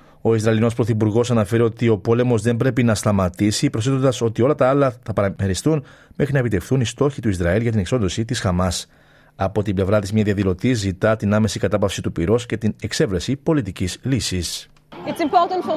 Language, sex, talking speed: Greek, male, 190 wpm